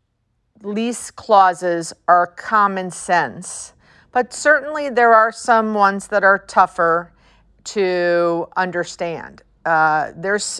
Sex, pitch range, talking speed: female, 165-205 Hz, 100 wpm